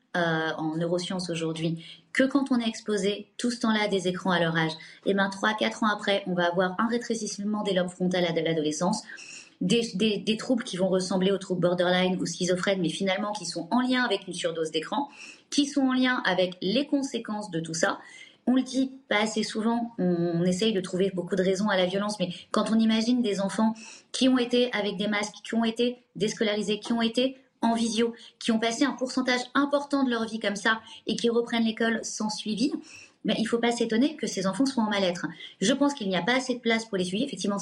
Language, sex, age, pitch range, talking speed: French, female, 20-39, 180-230 Hz, 230 wpm